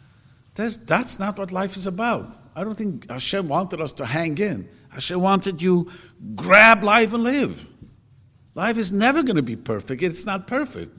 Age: 60-79